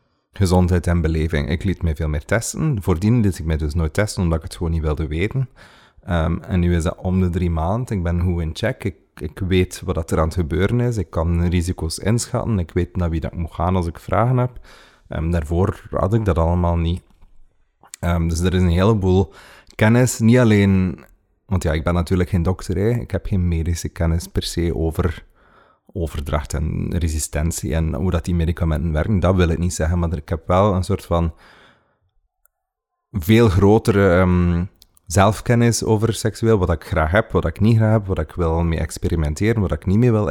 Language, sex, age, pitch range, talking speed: Dutch, male, 30-49, 85-100 Hz, 210 wpm